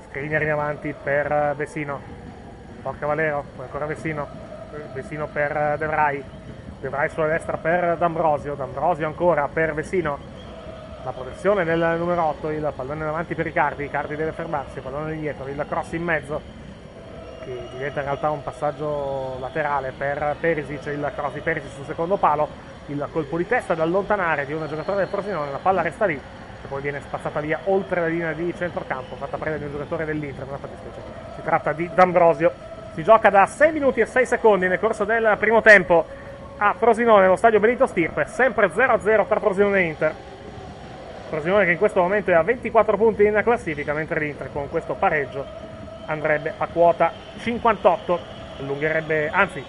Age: 30-49